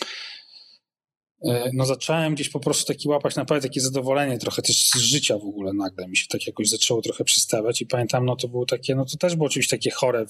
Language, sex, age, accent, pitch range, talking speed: English, male, 20-39, Polish, 110-145 Hz, 215 wpm